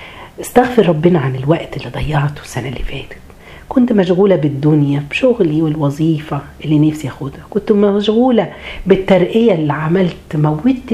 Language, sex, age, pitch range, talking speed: Arabic, female, 40-59, 125-185 Hz, 125 wpm